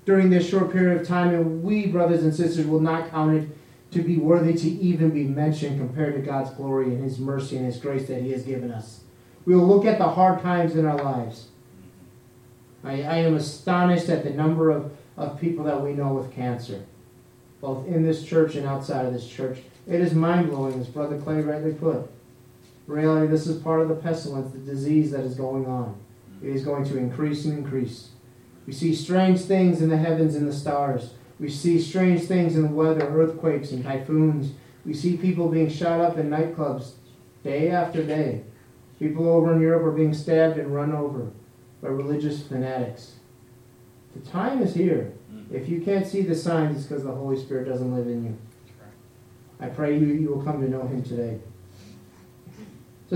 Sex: male